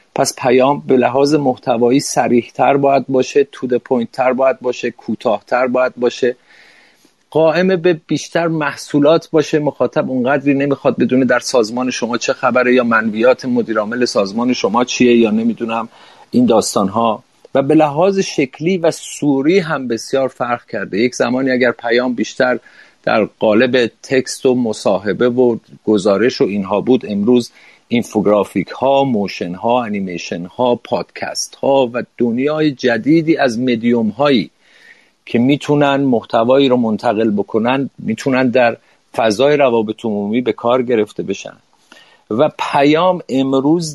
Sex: male